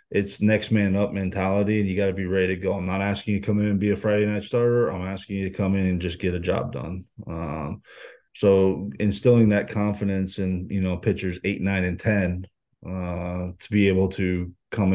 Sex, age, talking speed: male, 20-39, 230 wpm